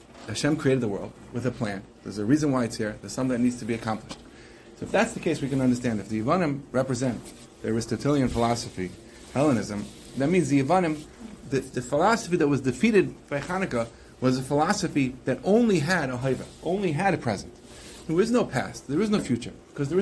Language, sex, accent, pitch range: English, male, American, 125-185 Hz